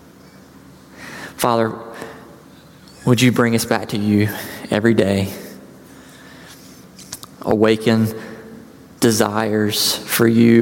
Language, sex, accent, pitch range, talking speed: English, male, American, 115-160 Hz, 80 wpm